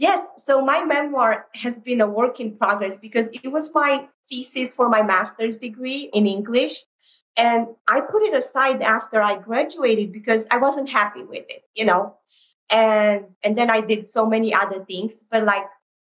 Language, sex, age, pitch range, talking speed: English, female, 30-49, 195-245 Hz, 180 wpm